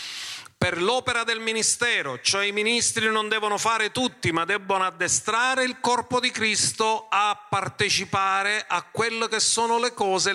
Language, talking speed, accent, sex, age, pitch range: Italian, 150 wpm, native, male, 40-59, 150-240 Hz